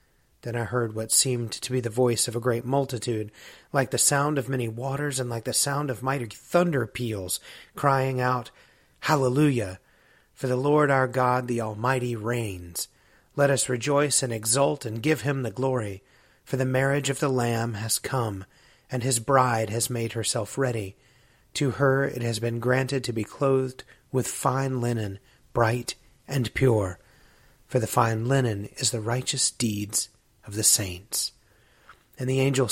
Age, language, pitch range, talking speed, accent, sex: 30-49, English, 115-135 Hz, 170 wpm, American, male